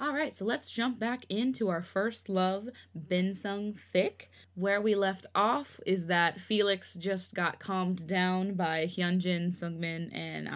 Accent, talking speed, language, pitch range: American, 155 wpm, English, 170-220 Hz